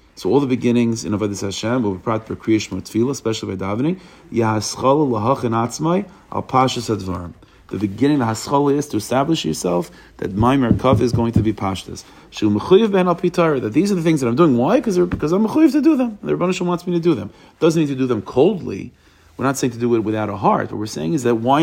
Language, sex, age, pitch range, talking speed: English, male, 40-59, 110-160 Hz, 210 wpm